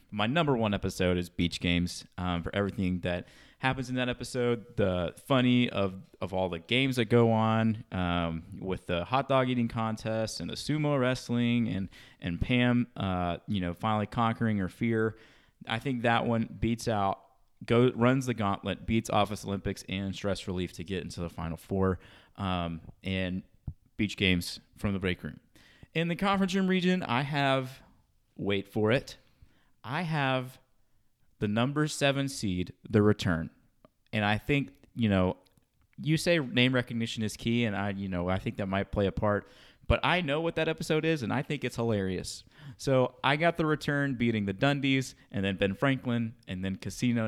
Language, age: English, 30-49